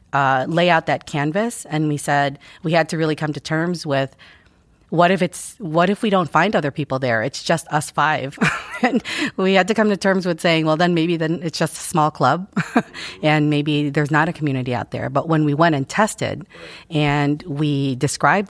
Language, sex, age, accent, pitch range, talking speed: English, female, 30-49, American, 145-175 Hz, 230 wpm